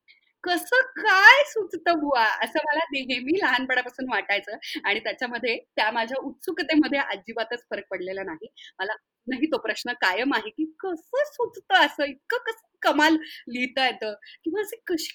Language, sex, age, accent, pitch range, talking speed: Marathi, female, 30-49, native, 245-355 Hz, 125 wpm